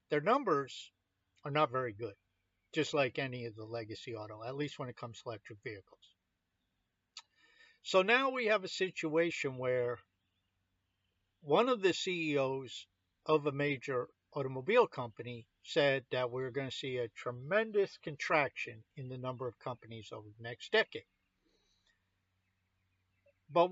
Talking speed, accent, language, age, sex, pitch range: 140 wpm, American, English, 50-69, male, 95-160 Hz